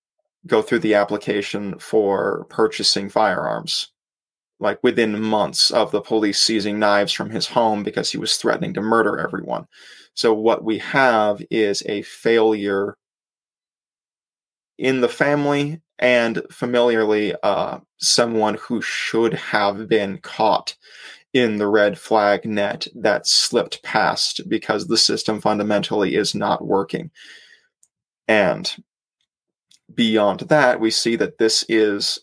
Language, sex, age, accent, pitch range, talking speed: English, male, 20-39, American, 105-120 Hz, 125 wpm